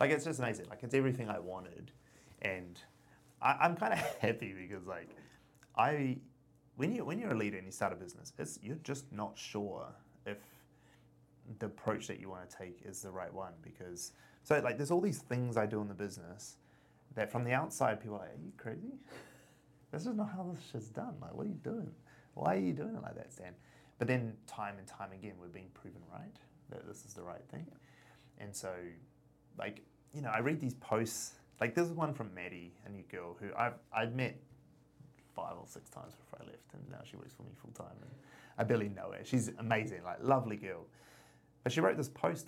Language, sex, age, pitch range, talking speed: English, male, 30-49, 95-130 Hz, 220 wpm